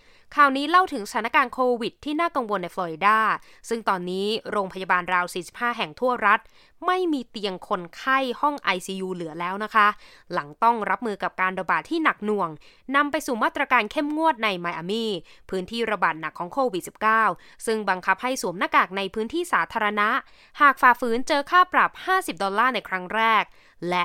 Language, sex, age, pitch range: Thai, female, 20-39, 190-255 Hz